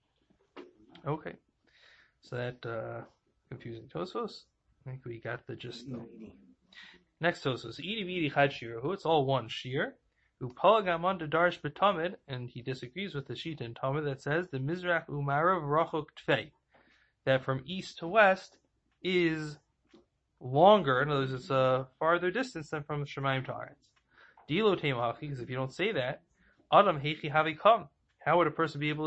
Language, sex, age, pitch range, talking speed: English, male, 20-39, 125-160 Hz, 125 wpm